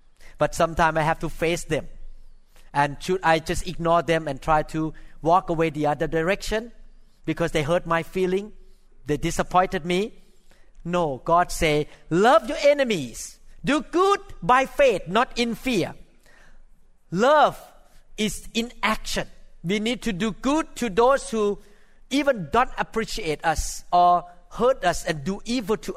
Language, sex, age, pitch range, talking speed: English, male, 40-59, 165-225 Hz, 150 wpm